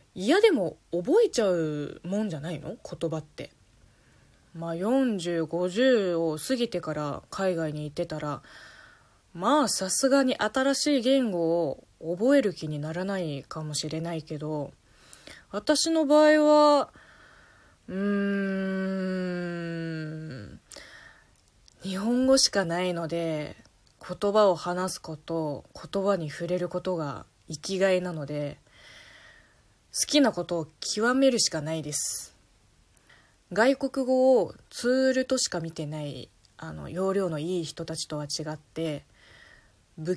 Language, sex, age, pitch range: Japanese, female, 20-39, 155-220 Hz